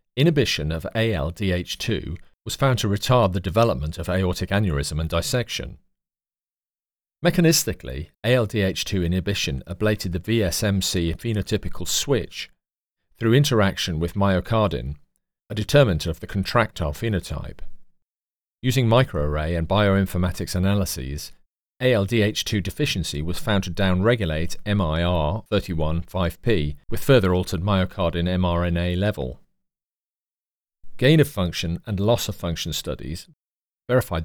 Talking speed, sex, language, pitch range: 105 wpm, male, English, 85-105 Hz